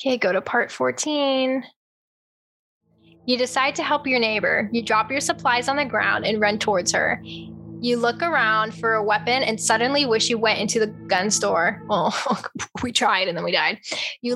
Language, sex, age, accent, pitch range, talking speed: English, female, 10-29, American, 220-265 Hz, 190 wpm